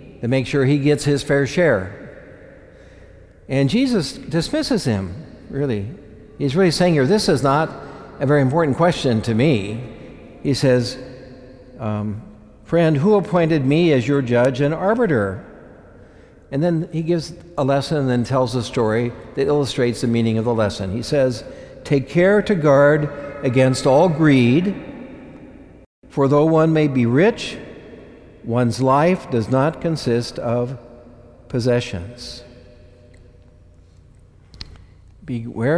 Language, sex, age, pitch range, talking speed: English, male, 60-79, 110-140 Hz, 130 wpm